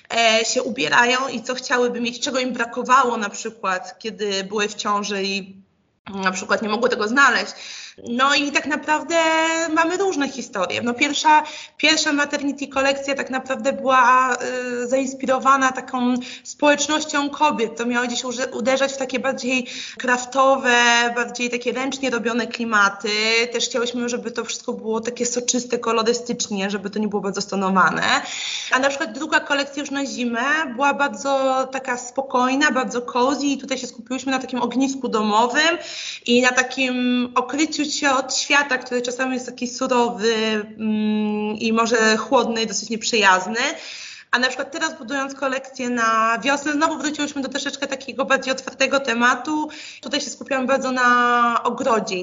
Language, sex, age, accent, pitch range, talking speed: Polish, female, 20-39, native, 230-275 Hz, 150 wpm